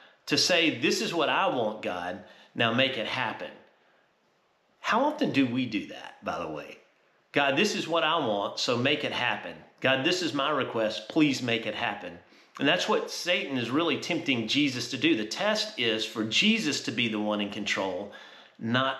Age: 40-59